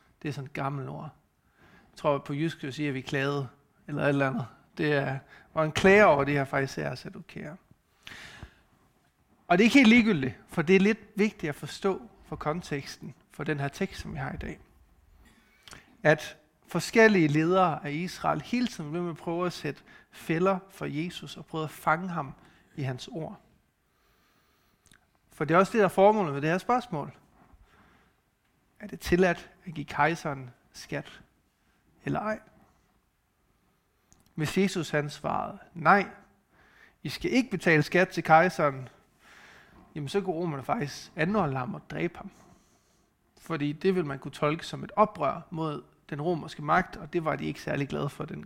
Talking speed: 180 wpm